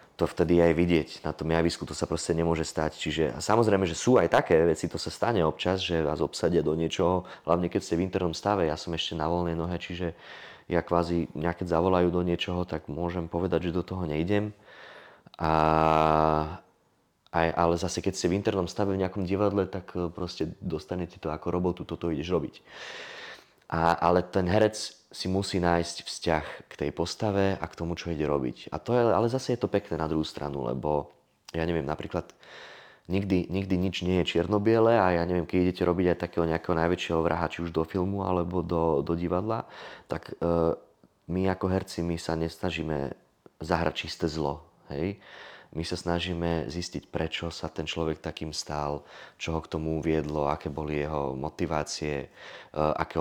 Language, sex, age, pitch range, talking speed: Slovak, male, 20-39, 80-90 Hz, 185 wpm